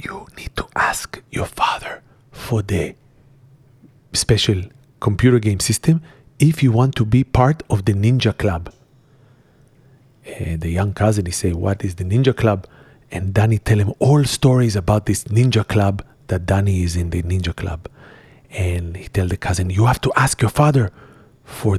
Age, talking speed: 40-59, 170 wpm